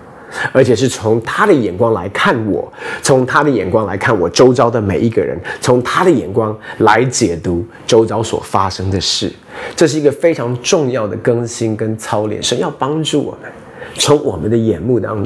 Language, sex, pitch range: Chinese, male, 105-135 Hz